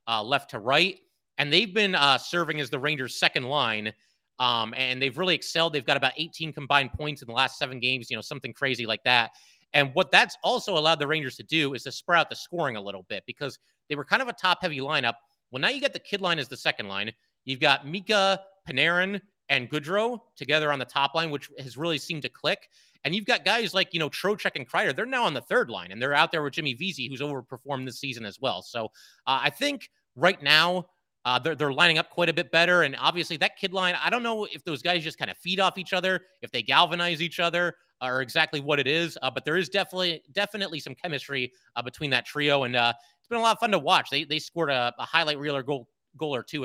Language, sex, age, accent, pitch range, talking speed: English, male, 30-49, American, 130-180 Hz, 250 wpm